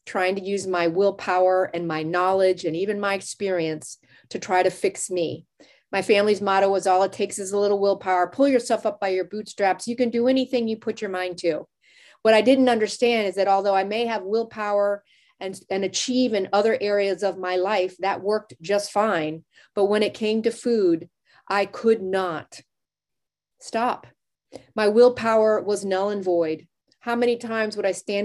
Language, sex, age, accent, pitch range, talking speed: English, female, 40-59, American, 185-235 Hz, 190 wpm